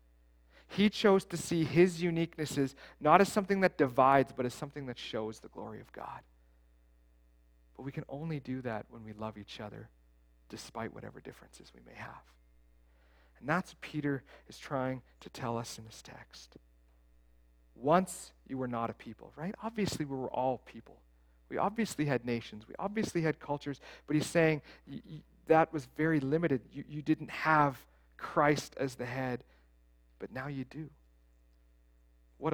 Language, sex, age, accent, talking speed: English, male, 40-59, American, 160 wpm